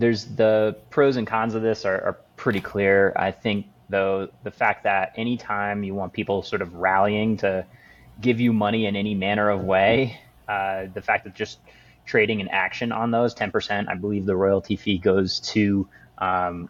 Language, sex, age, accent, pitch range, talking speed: English, male, 20-39, American, 100-120 Hz, 190 wpm